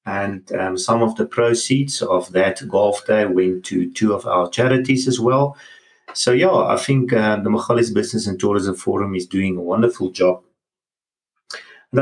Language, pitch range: English, 95-125 Hz